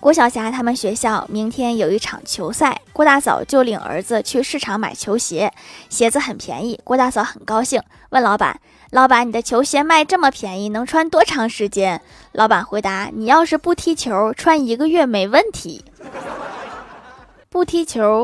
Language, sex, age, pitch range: Chinese, female, 20-39, 215-275 Hz